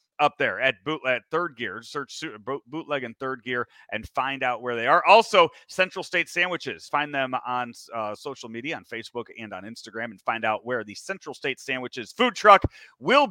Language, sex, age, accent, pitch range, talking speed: English, male, 30-49, American, 125-200 Hz, 195 wpm